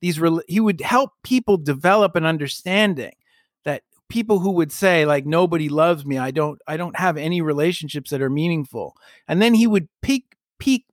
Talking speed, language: 175 wpm, English